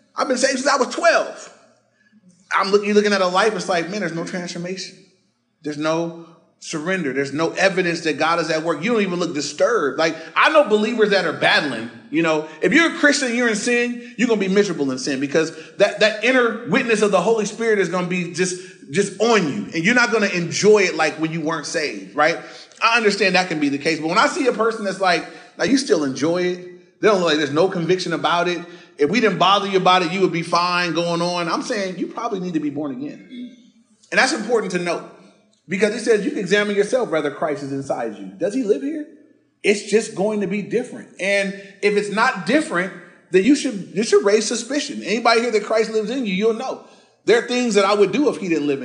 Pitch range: 175-230 Hz